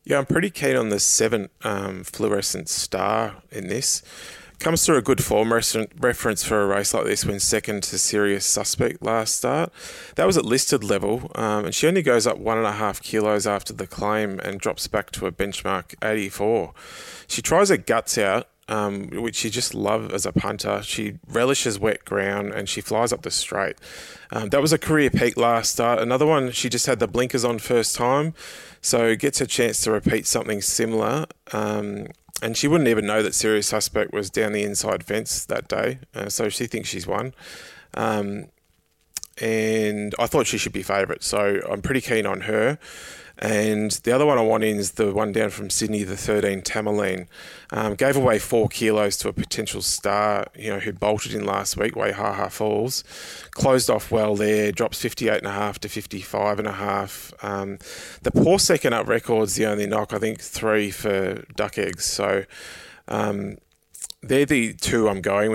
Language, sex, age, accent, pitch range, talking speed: English, male, 20-39, Australian, 100-115 Hz, 190 wpm